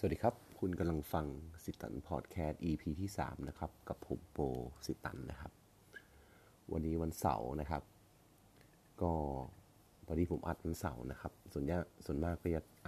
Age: 30-49